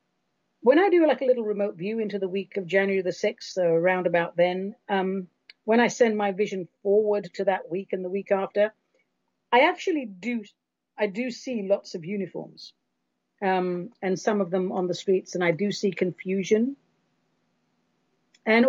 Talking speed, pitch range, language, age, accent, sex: 175 wpm, 175-225 Hz, English, 40-59, British, female